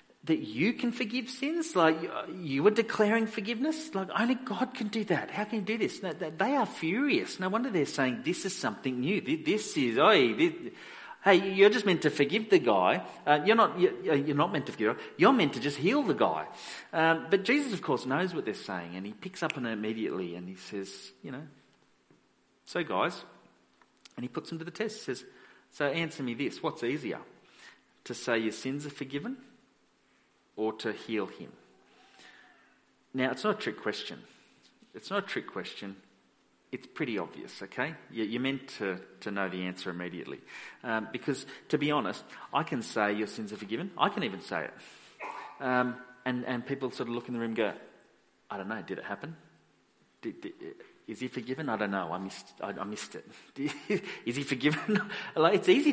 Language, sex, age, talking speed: English, male, 40-59, 200 wpm